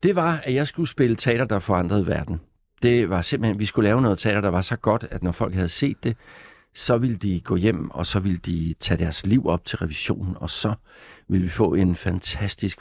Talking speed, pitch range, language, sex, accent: 235 wpm, 90-110 Hz, Danish, male, native